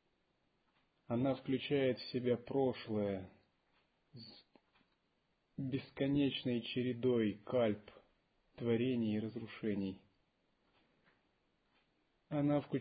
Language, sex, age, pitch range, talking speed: Russian, male, 30-49, 110-135 Hz, 60 wpm